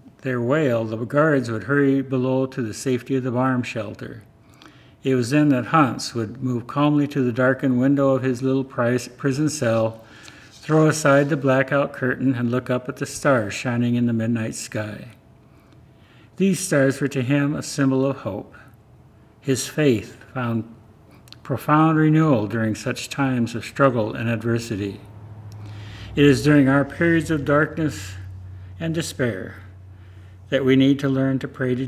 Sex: male